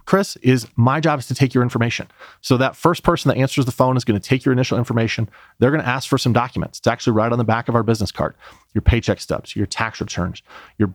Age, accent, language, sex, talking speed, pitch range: 30-49, American, English, male, 265 wpm, 110-135 Hz